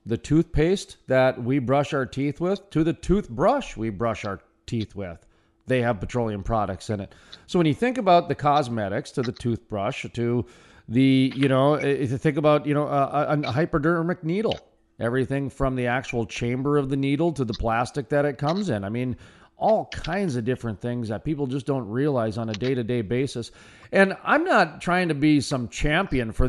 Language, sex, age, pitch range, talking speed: English, male, 40-59, 120-145 Hz, 195 wpm